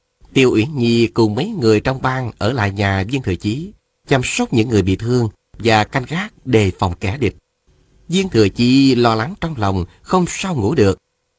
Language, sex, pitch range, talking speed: Vietnamese, male, 105-130 Hz, 200 wpm